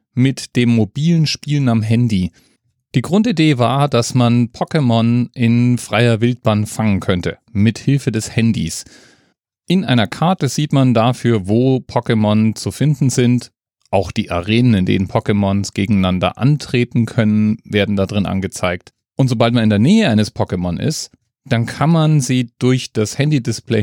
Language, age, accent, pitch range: German, 30-49, German, 105-130 Hz